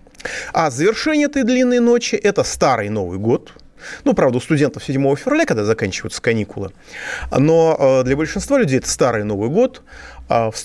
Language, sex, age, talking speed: Russian, male, 30-49, 150 wpm